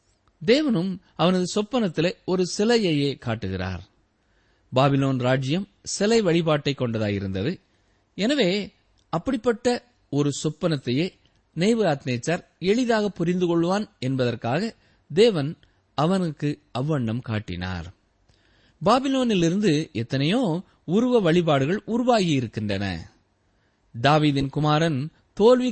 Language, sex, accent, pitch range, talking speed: Tamil, male, native, 115-185 Hz, 75 wpm